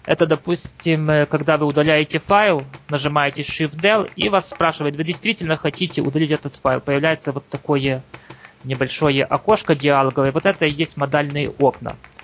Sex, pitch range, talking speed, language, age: male, 135-165 Hz, 140 wpm, Russian, 20-39